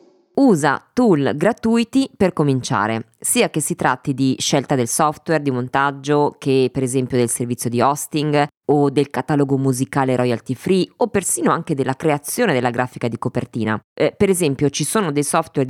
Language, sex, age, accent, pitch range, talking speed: Italian, female, 20-39, native, 125-155 Hz, 170 wpm